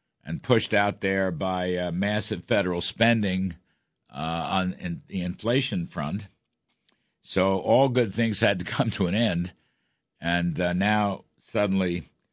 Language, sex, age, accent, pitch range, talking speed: English, male, 60-79, American, 80-105 Hz, 140 wpm